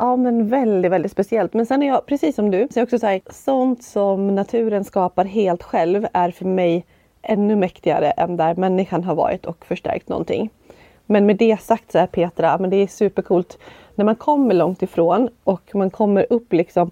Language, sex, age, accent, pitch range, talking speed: Swedish, female, 30-49, native, 175-220 Hz, 200 wpm